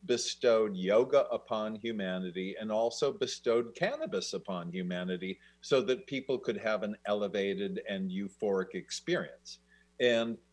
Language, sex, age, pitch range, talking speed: English, male, 50-69, 95-145 Hz, 120 wpm